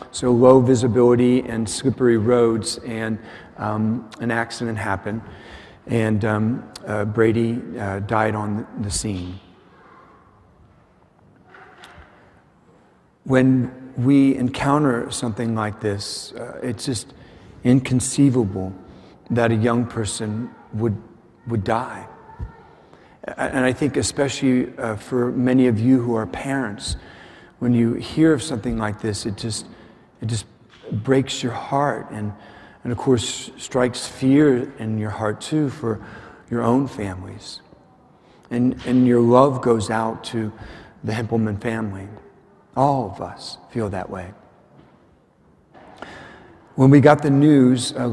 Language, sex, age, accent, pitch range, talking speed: English, male, 50-69, American, 110-125 Hz, 125 wpm